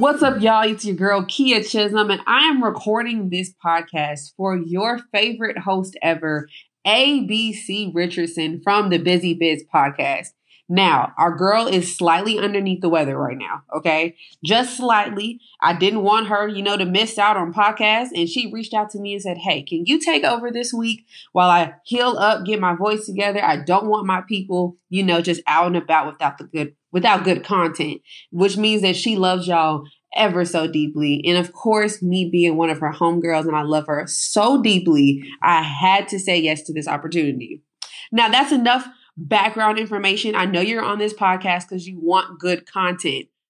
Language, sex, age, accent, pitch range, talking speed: English, female, 20-39, American, 170-215 Hz, 190 wpm